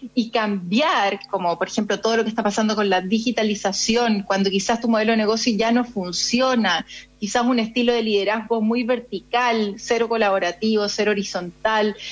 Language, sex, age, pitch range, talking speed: Spanish, female, 30-49, 210-255 Hz, 165 wpm